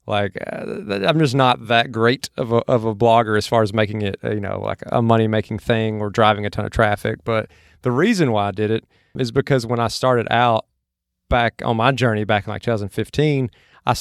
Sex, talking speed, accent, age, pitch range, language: male, 215 wpm, American, 30-49, 115-135 Hz, English